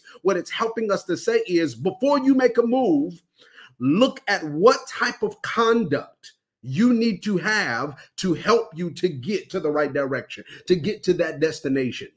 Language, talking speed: English, 180 wpm